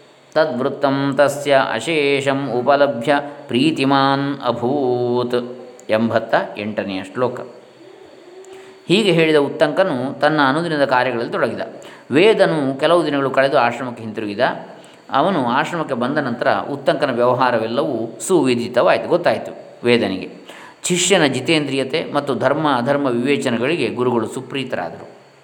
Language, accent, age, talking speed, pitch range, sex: Kannada, native, 20-39, 90 wpm, 125-140 Hz, male